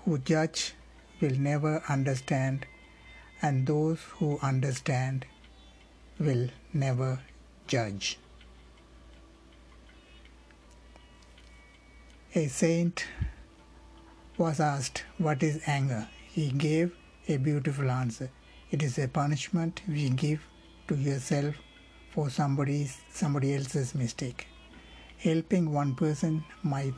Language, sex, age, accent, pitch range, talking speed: Tamil, male, 60-79, native, 130-155 Hz, 90 wpm